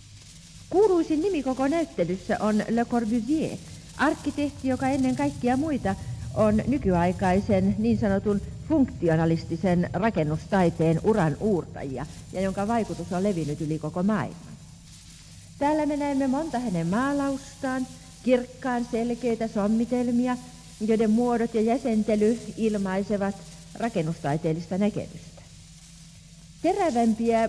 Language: Finnish